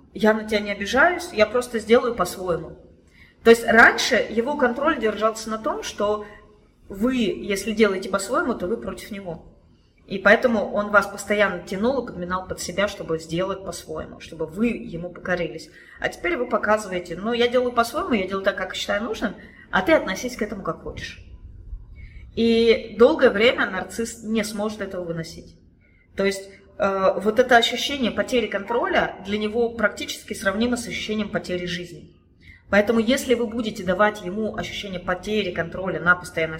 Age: 20-39